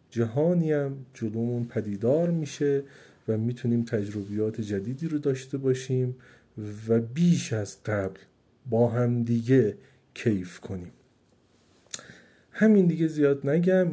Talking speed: 110 wpm